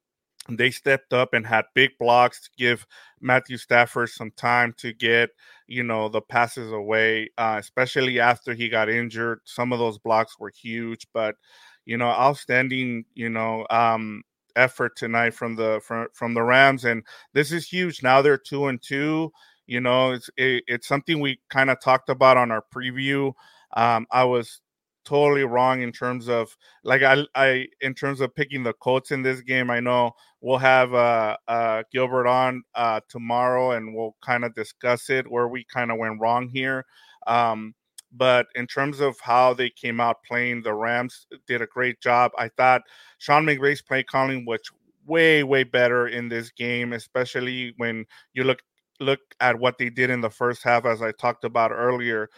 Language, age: English, 30-49